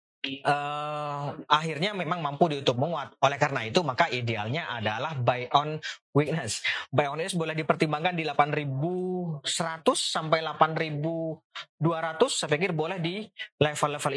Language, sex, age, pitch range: Indonesian, male, 20-39, 145-175 Hz